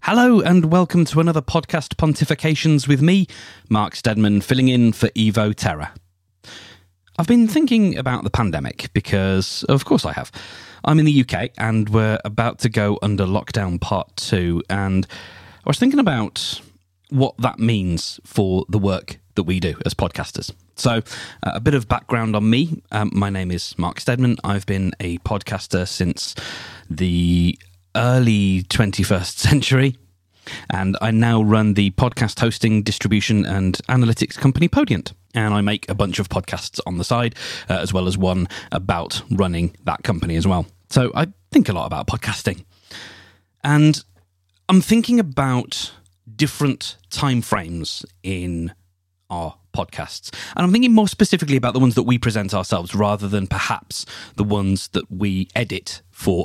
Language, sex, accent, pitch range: English, male, British, 95-125 Hz